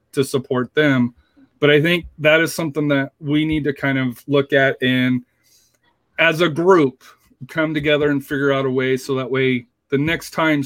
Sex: male